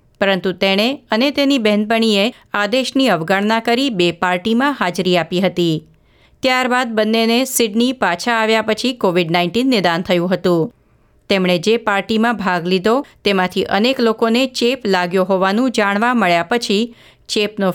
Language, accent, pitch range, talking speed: Gujarati, native, 185-235 Hz, 110 wpm